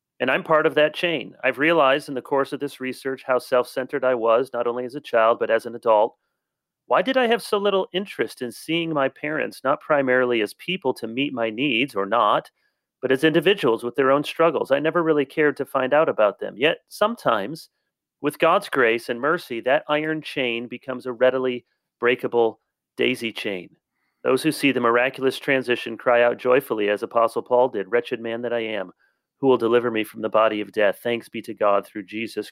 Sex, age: male, 40-59